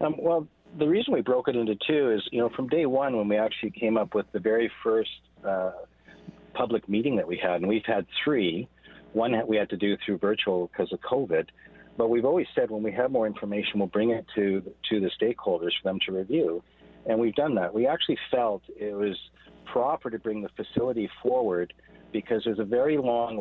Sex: male